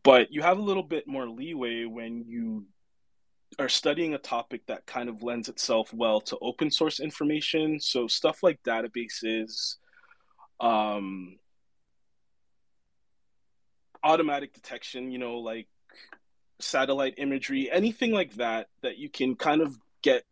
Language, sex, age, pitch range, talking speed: English, male, 20-39, 110-145 Hz, 135 wpm